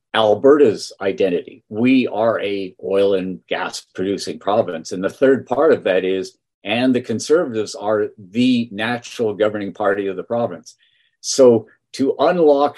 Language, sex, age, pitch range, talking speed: English, male, 50-69, 105-135 Hz, 145 wpm